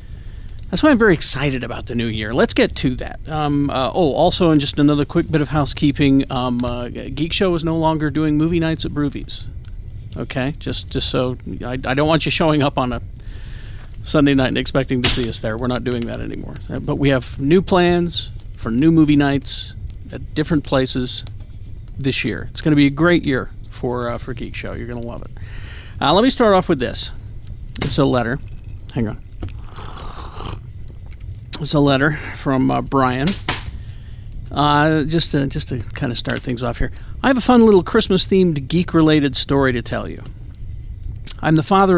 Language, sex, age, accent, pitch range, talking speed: English, male, 40-59, American, 110-160 Hz, 195 wpm